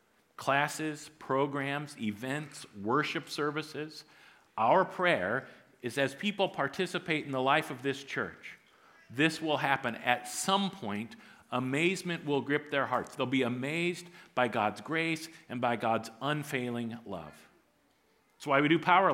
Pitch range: 135-165 Hz